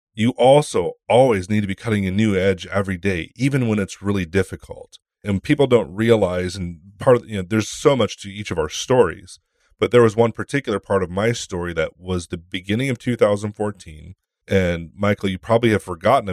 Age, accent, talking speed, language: 30-49, American, 200 wpm, English